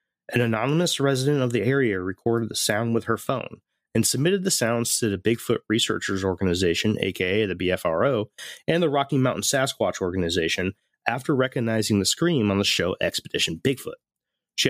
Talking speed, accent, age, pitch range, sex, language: 165 wpm, American, 30-49, 95-125 Hz, male, English